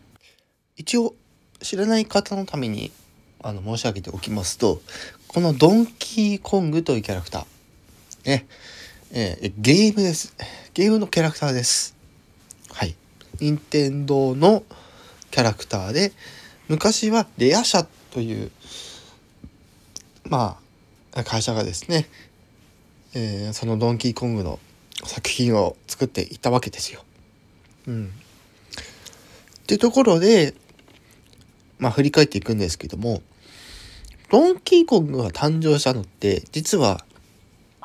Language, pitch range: Japanese, 100-150 Hz